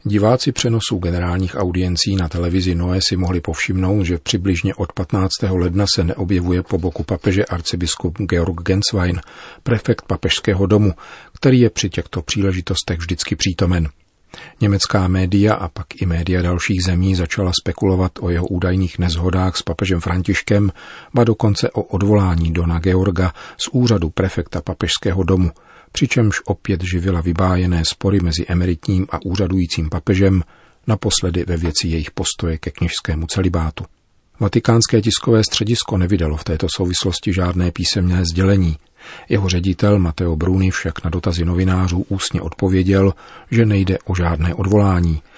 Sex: male